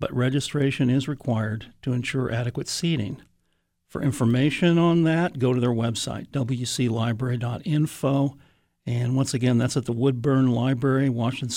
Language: English